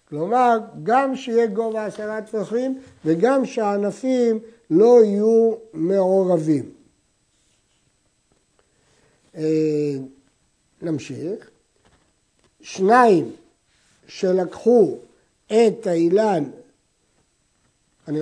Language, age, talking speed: Hebrew, 60-79, 55 wpm